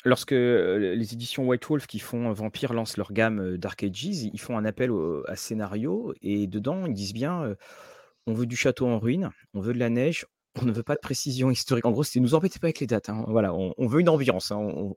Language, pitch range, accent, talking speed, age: French, 115-180 Hz, French, 245 wpm, 30-49